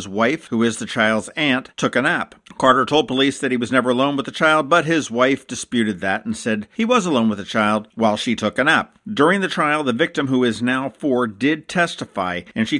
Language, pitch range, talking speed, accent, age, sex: English, 115-155 Hz, 250 wpm, American, 50-69, male